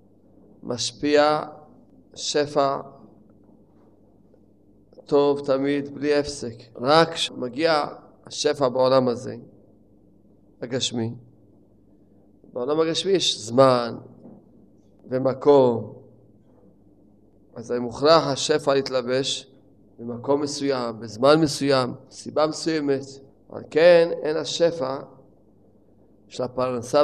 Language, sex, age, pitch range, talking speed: Hebrew, male, 30-49, 105-150 Hz, 75 wpm